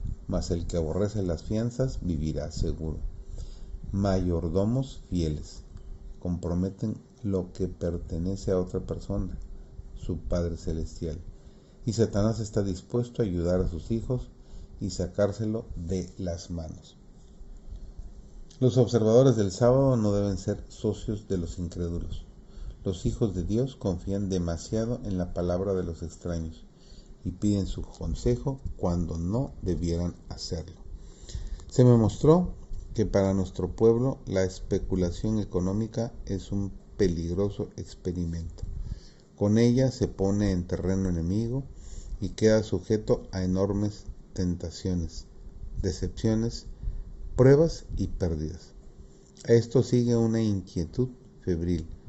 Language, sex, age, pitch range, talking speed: Spanish, male, 40-59, 85-110 Hz, 115 wpm